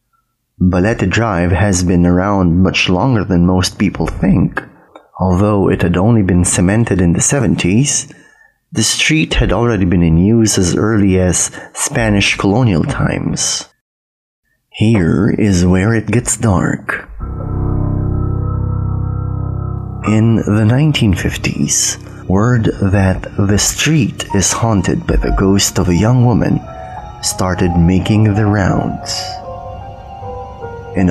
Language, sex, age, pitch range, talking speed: English, male, 30-49, 90-110 Hz, 115 wpm